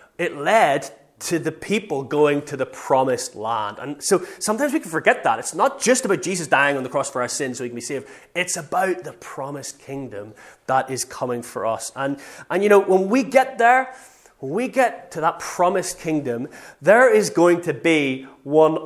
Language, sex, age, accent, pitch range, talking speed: English, male, 20-39, British, 125-175 Hz, 205 wpm